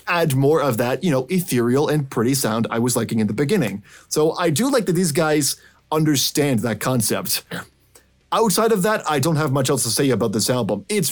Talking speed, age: 215 wpm, 20-39